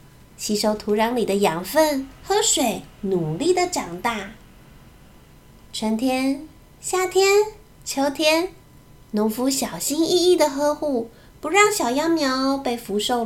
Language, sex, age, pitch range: Chinese, female, 20-39, 205-320 Hz